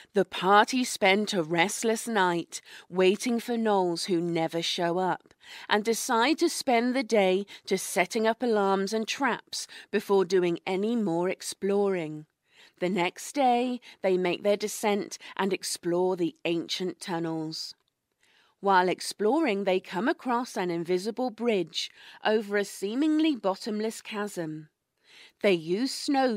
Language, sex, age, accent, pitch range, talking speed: English, female, 40-59, British, 180-230 Hz, 130 wpm